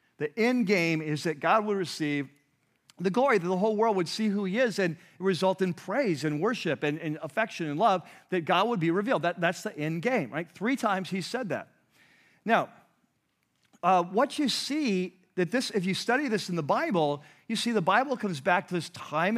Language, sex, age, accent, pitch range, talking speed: English, male, 40-59, American, 160-215 Hz, 210 wpm